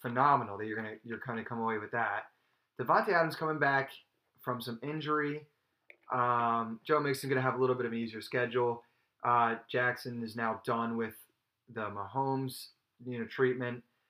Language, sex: English, male